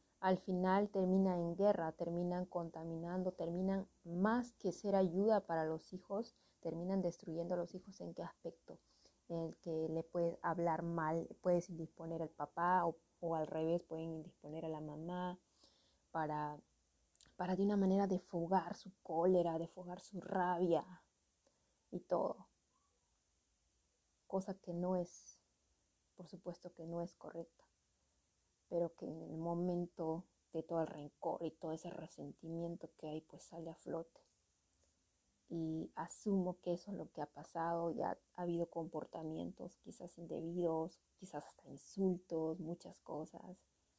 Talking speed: 145 wpm